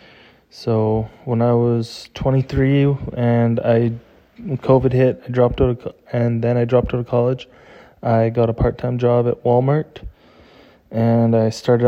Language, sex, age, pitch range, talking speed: English, male, 20-39, 120-130 Hz, 160 wpm